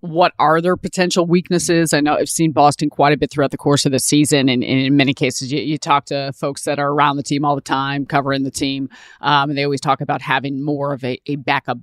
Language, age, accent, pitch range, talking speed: English, 30-49, American, 135-150 Hz, 265 wpm